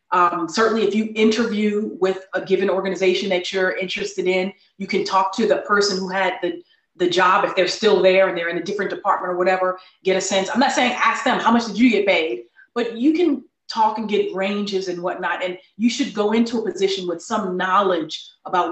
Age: 30-49